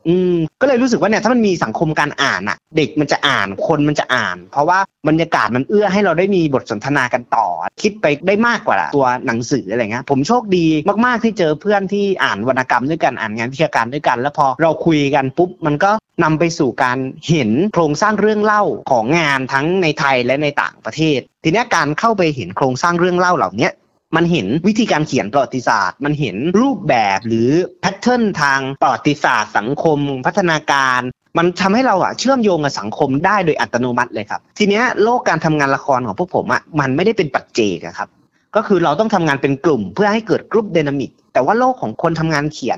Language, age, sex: Thai, 30-49, male